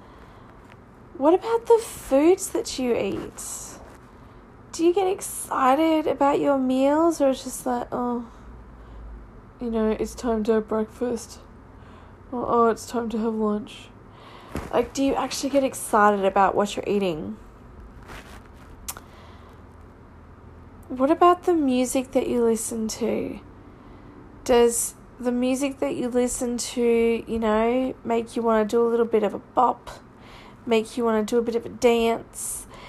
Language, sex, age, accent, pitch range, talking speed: English, female, 20-39, Australian, 220-260 Hz, 150 wpm